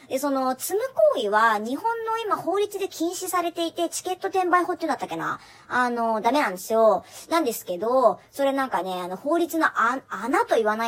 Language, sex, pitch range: Japanese, male, 220-340 Hz